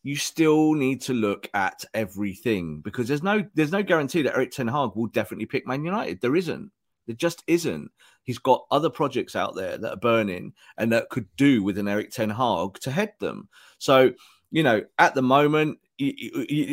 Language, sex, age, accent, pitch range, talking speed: English, male, 30-49, British, 105-140 Hz, 195 wpm